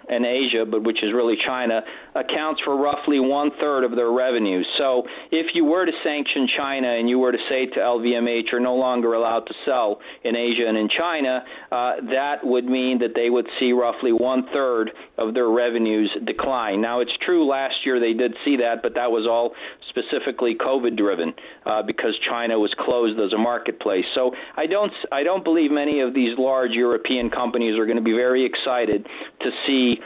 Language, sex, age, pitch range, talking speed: English, male, 40-59, 115-135 Hz, 195 wpm